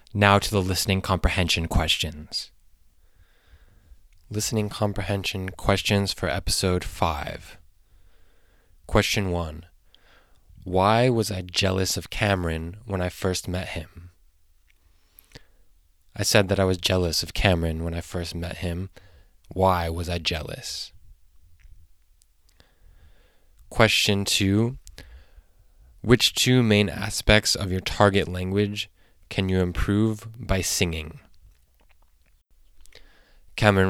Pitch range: 80-100 Hz